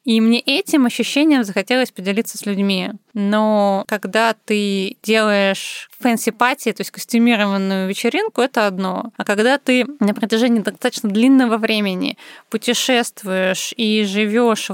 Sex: female